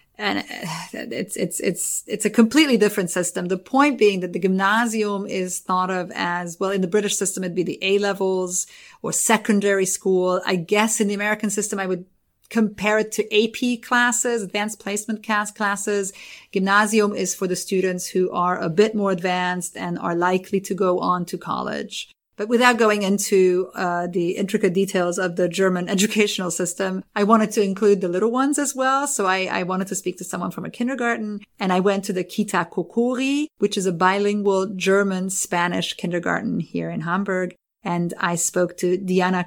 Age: 30-49